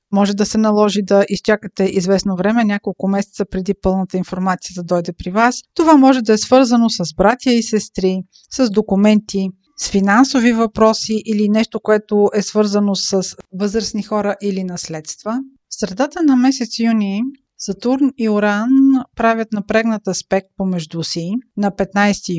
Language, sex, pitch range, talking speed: Bulgarian, female, 195-230 Hz, 150 wpm